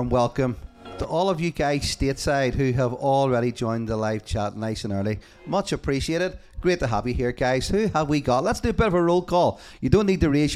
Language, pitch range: English, 110-145 Hz